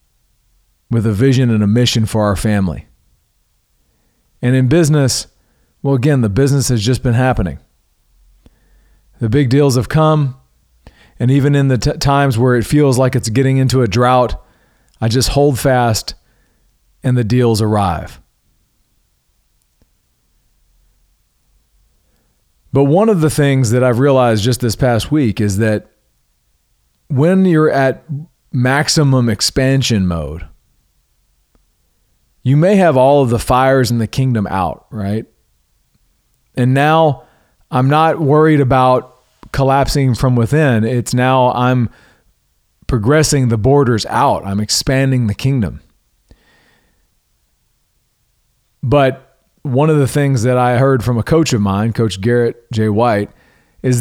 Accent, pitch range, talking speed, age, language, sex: American, 115-140 Hz, 130 wpm, 40-59, English, male